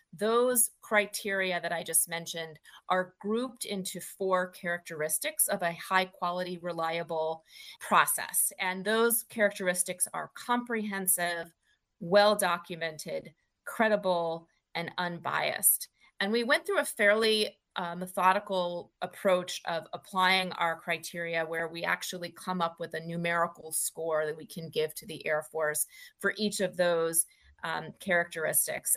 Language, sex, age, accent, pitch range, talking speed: English, female, 30-49, American, 165-200 Hz, 125 wpm